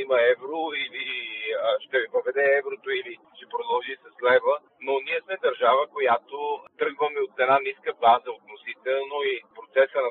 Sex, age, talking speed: male, 40-59, 155 wpm